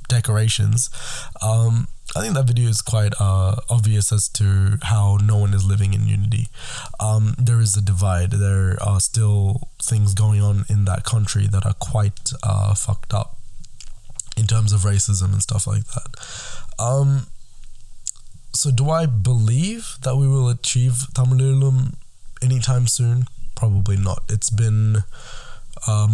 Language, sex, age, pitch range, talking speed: Tamil, male, 20-39, 105-125 Hz, 150 wpm